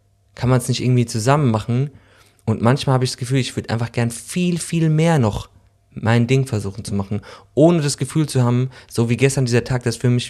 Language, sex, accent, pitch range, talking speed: German, male, German, 100-125 Hz, 235 wpm